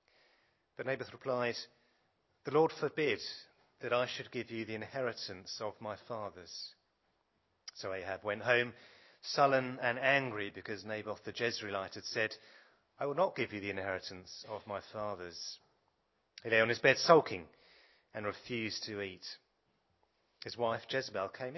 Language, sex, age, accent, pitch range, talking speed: English, male, 30-49, British, 105-135 Hz, 145 wpm